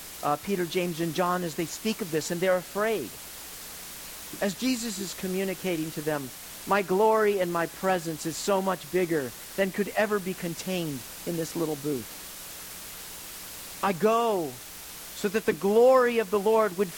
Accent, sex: American, male